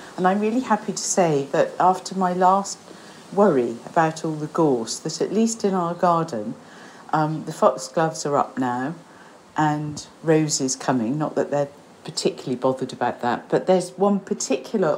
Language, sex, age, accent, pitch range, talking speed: English, female, 50-69, British, 150-200 Hz, 165 wpm